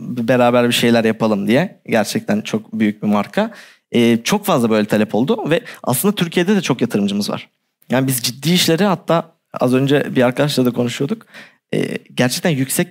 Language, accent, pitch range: Turkish, native, 125-165 Hz